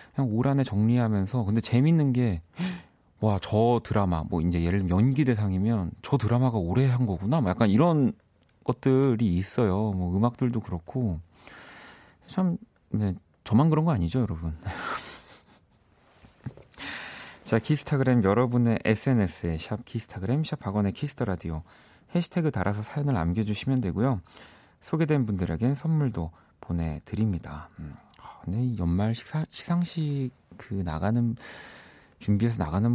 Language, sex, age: Korean, male, 40-59